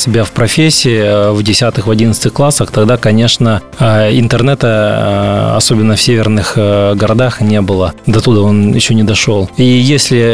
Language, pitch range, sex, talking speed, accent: Russian, 110-135 Hz, male, 140 wpm, native